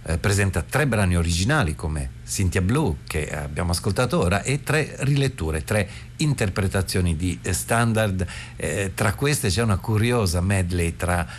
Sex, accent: male, native